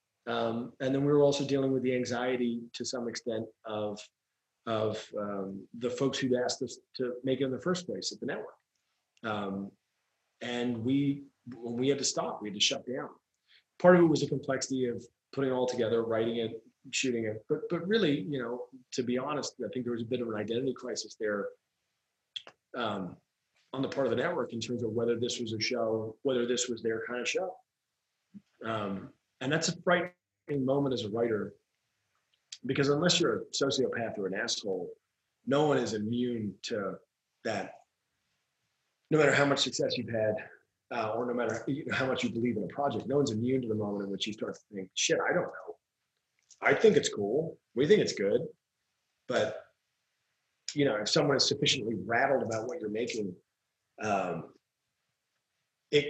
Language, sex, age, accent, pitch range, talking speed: English, male, 30-49, American, 115-140 Hz, 195 wpm